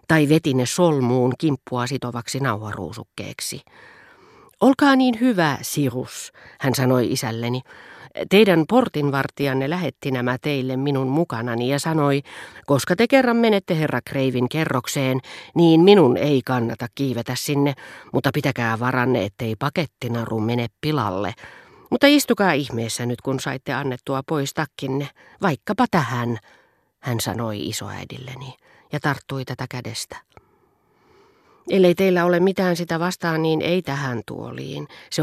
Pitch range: 125-160 Hz